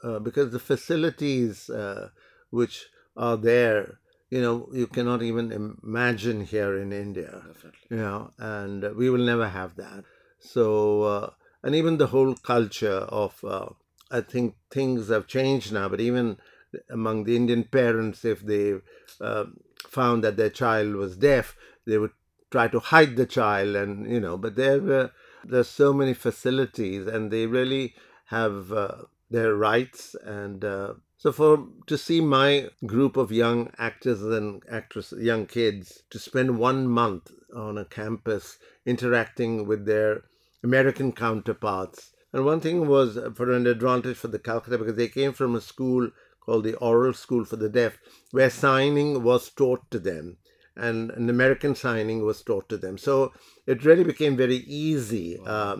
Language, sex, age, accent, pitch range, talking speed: English, male, 60-79, Indian, 110-130 Hz, 160 wpm